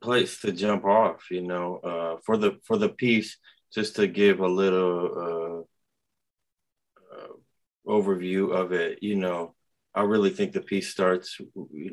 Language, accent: English, American